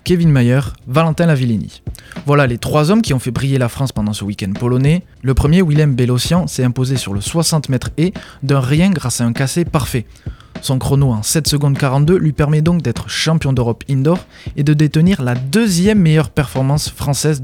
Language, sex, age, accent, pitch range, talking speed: French, male, 20-39, French, 125-155 Hz, 195 wpm